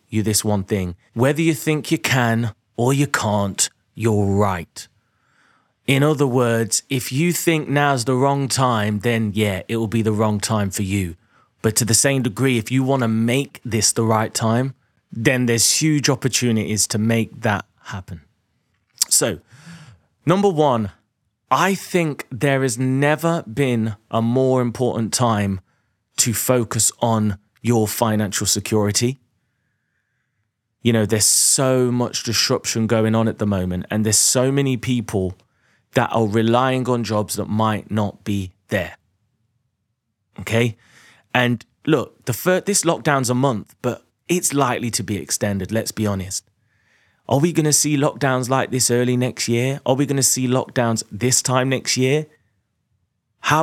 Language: English